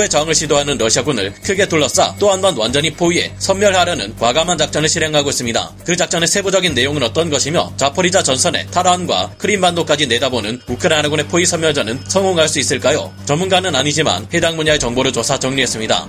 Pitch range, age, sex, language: 140-185 Hz, 30-49, male, Korean